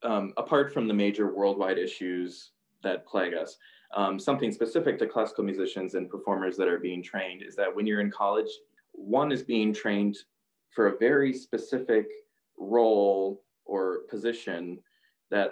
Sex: male